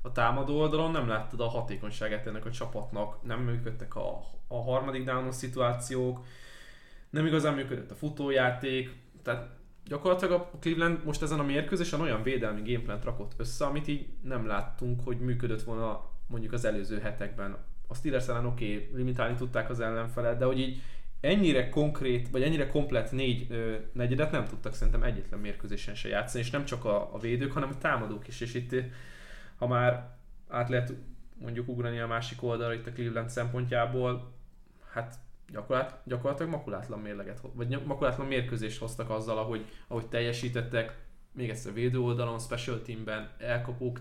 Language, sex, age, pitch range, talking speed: Hungarian, male, 20-39, 115-130 Hz, 160 wpm